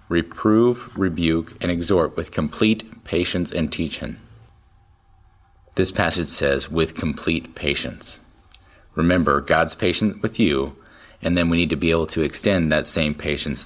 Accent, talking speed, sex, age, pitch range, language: American, 140 wpm, male, 30-49, 85-115 Hz, English